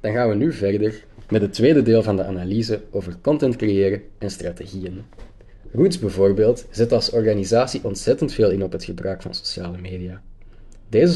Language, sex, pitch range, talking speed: English, male, 95-115 Hz, 170 wpm